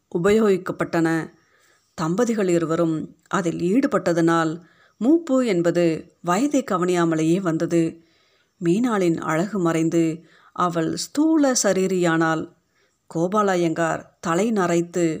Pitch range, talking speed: 165-195 Hz, 75 wpm